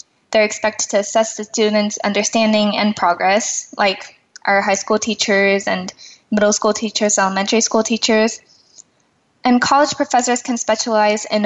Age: 10-29